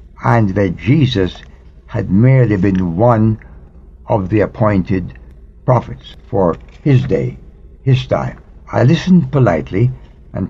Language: English